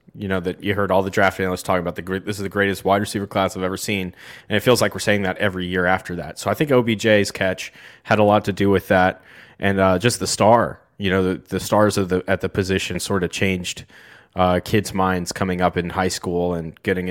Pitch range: 90-105 Hz